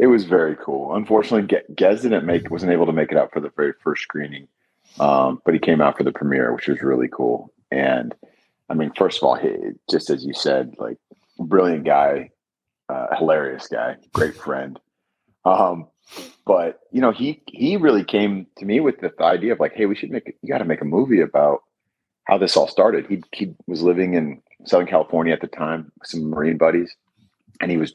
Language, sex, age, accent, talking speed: English, male, 40-59, American, 205 wpm